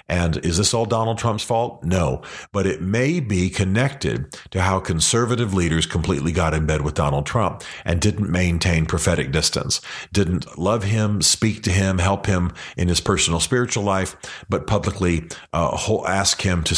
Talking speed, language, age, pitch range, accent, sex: 170 wpm, English, 40-59, 80-100 Hz, American, male